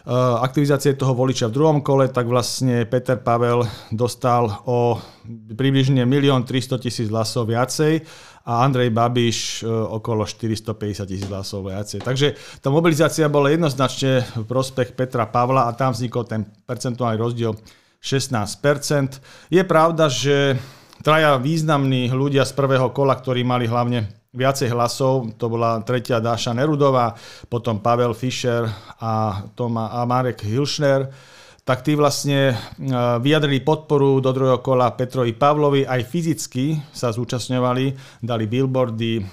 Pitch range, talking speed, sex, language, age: 120-135 Hz, 130 wpm, male, Slovak, 40-59